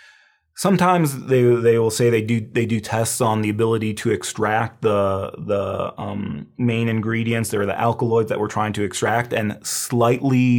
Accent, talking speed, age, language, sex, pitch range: American, 170 wpm, 30-49, English, male, 100-125 Hz